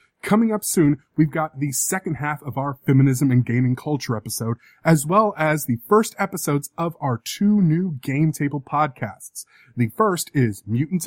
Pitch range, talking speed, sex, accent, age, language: 125-175 Hz, 175 wpm, male, American, 30-49, English